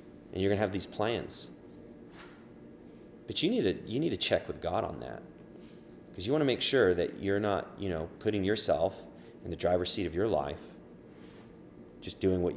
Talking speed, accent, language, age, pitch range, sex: 200 wpm, American, English, 30-49, 70-105 Hz, male